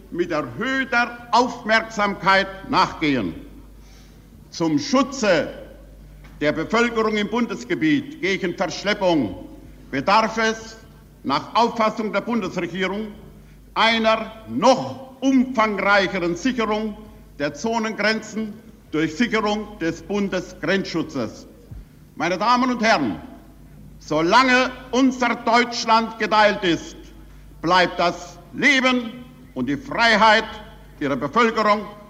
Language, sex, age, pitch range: German, male, 60-79, 195-245 Hz